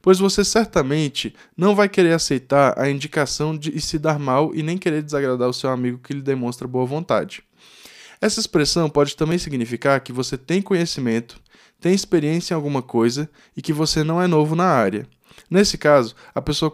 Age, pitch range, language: 10-29, 130-165 Hz, Portuguese